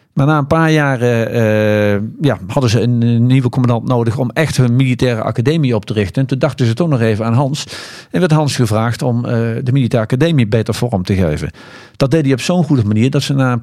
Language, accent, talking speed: Dutch, Dutch, 240 wpm